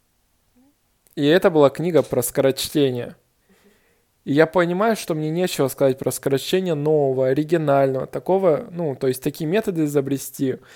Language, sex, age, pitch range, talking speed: Russian, male, 20-39, 135-170 Hz, 135 wpm